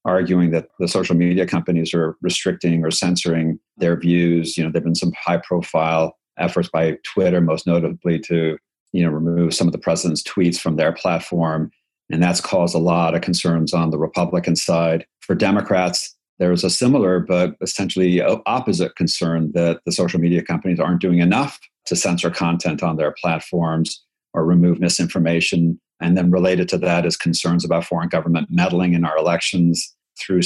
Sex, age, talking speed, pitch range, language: male, 50-69, 175 wpm, 85-90 Hz, English